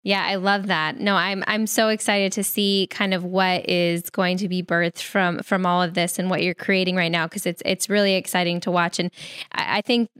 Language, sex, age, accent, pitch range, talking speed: English, female, 10-29, American, 180-215 Hz, 240 wpm